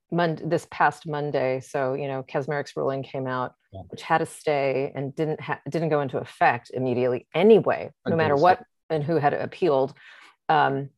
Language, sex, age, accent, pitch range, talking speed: English, female, 40-59, American, 140-165 Hz, 180 wpm